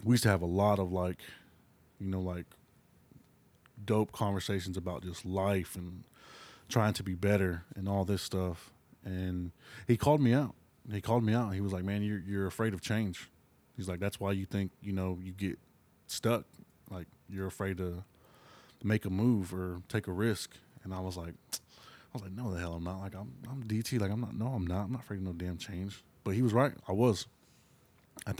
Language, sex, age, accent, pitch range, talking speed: English, male, 20-39, American, 95-110 Hz, 215 wpm